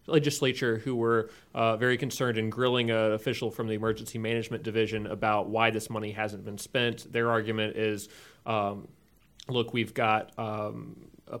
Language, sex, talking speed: English, male, 160 wpm